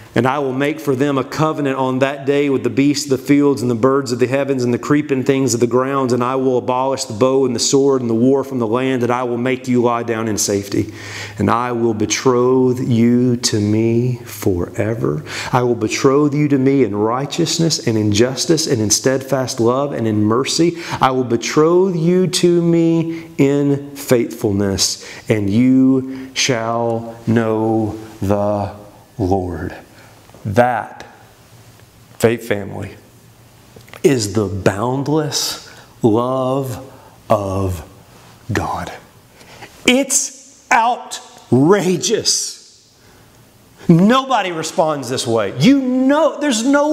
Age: 30-49